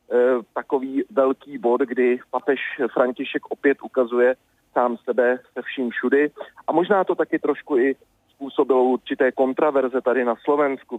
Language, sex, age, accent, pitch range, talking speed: Czech, male, 40-59, native, 120-140 Hz, 135 wpm